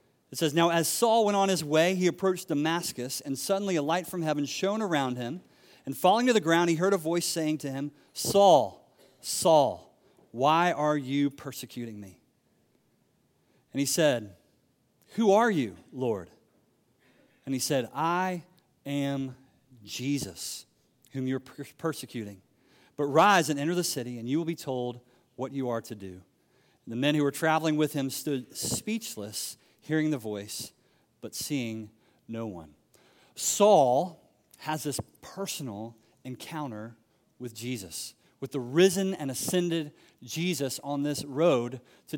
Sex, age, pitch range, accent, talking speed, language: male, 40-59, 130-180 Hz, American, 150 wpm, English